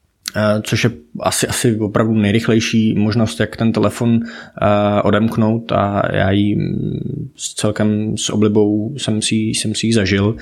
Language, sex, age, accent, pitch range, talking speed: Czech, male, 20-39, native, 105-125 Hz, 145 wpm